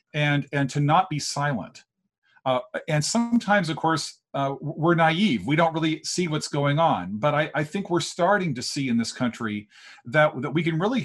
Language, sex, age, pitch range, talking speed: English, male, 40-59, 120-155 Hz, 200 wpm